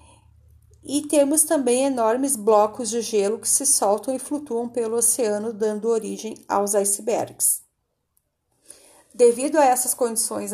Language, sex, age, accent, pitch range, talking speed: Portuguese, female, 40-59, Brazilian, 210-260 Hz, 125 wpm